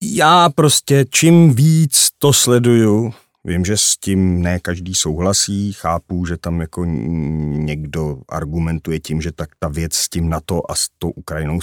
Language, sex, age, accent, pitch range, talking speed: Czech, male, 40-59, native, 85-115 Hz, 165 wpm